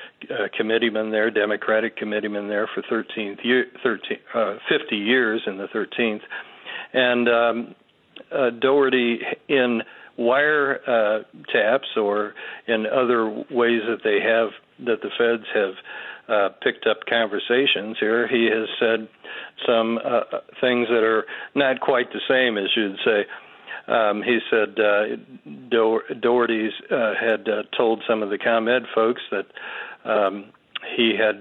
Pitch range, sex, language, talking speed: 110-115 Hz, male, English, 145 wpm